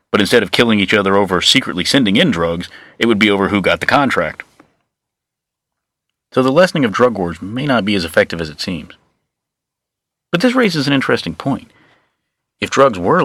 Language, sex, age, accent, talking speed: English, male, 40-59, American, 190 wpm